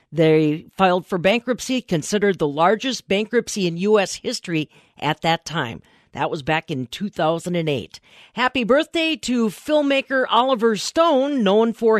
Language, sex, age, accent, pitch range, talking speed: English, female, 50-69, American, 180-255 Hz, 135 wpm